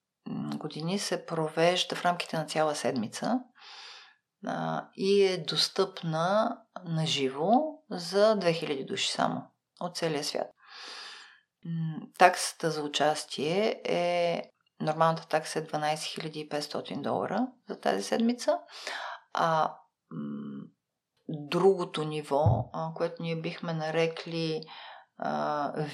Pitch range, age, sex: 155-205 Hz, 40-59, female